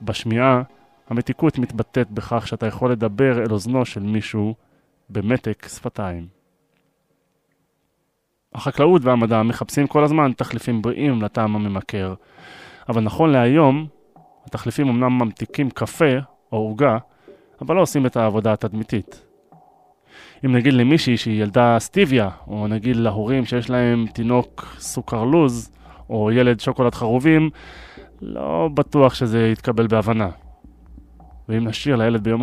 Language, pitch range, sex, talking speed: Hebrew, 110-125 Hz, male, 115 wpm